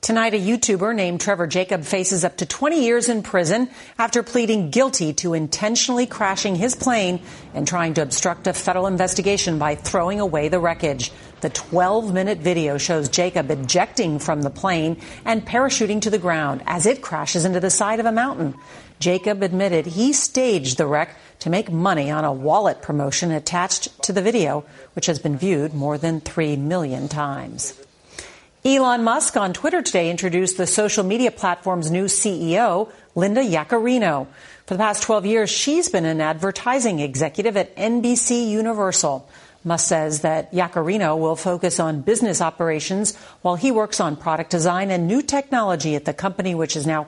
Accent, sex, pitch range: American, female, 160-215 Hz